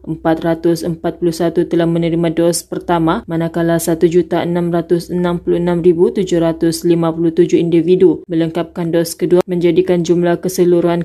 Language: Malay